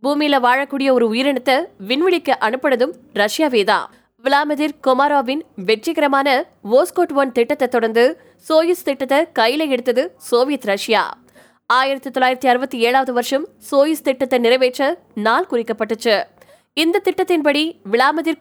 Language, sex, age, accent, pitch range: Tamil, female, 20-39, native, 245-310 Hz